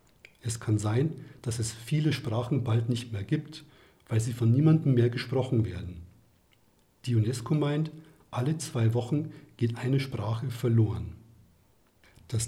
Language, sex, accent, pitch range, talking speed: German, male, German, 110-135 Hz, 140 wpm